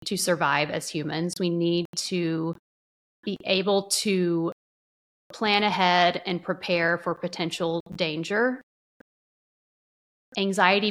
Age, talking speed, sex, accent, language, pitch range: 30-49, 100 wpm, female, American, English, 165-185 Hz